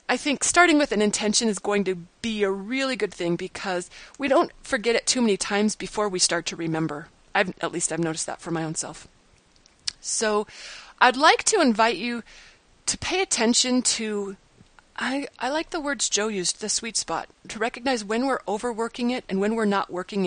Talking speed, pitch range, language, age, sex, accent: 200 wpm, 185-255 Hz, English, 30-49, female, American